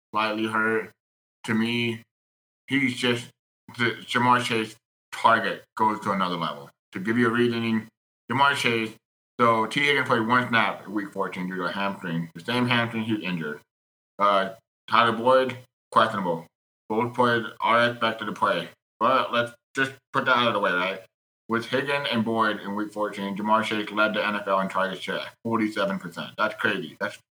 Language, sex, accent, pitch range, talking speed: English, male, American, 100-120 Hz, 170 wpm